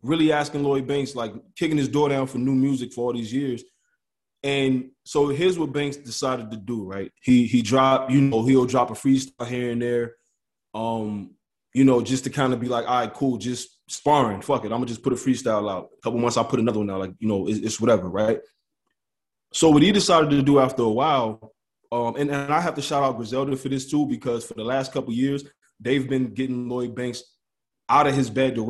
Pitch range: 115-135 Hz